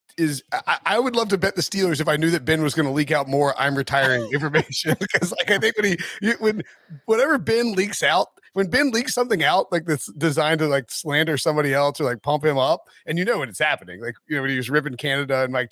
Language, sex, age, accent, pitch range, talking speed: English, male, 30-49, American, 130-175 Hz, 265 wpm